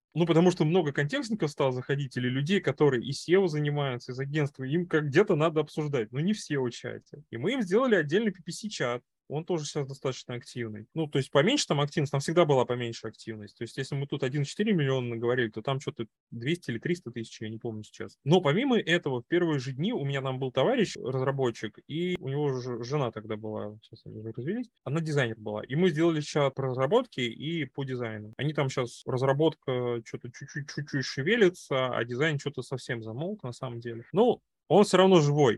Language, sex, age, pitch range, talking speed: Russian, male, 20-39, 120-160 Hz, 200 wpm